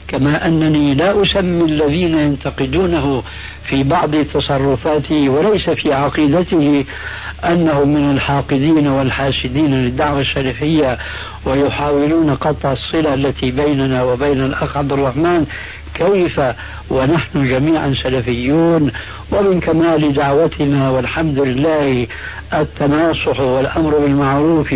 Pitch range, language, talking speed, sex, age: 110-150 Hz, Arabic, 95 wpm, male, 60-79